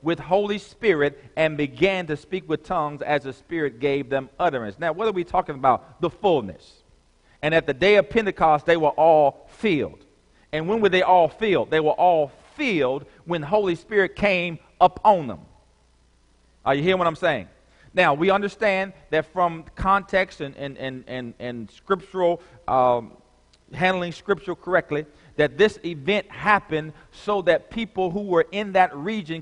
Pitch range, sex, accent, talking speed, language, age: 140-185 Hz, male, American, 170 wpm, English, 40-59